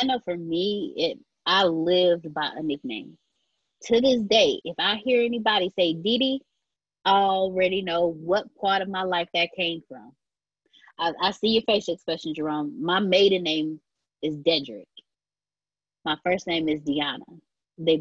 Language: English